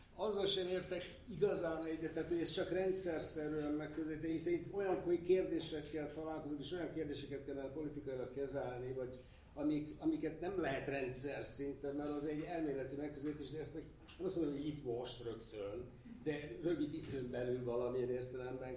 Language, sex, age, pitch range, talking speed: Hungarian, male, 60-79, 140-165 Hz, 155 wpm